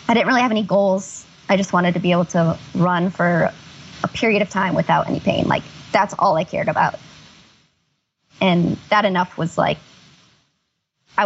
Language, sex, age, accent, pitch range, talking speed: English, male, 20-39, American, 165-195 Hz, 180 wpm